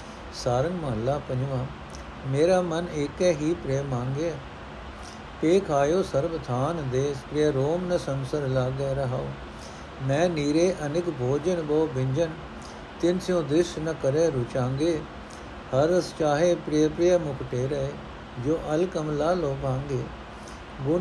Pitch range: 125-165 Hz